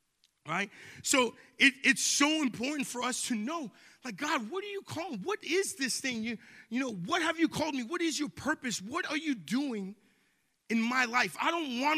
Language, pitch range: English, 205-265 Hz